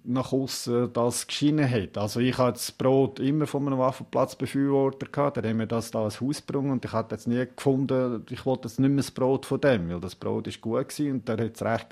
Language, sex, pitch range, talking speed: German, male, 120-140 Hz, 225 wpm